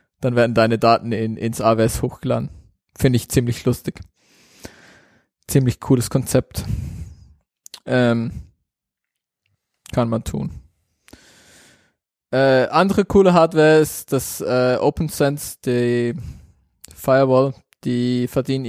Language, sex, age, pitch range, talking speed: German, male, 20-39, 115-130 Hz, 95 wpm